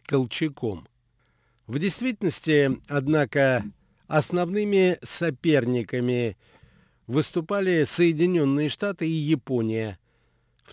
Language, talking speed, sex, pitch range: Russian, 60 wpm, male, 120-160 Hz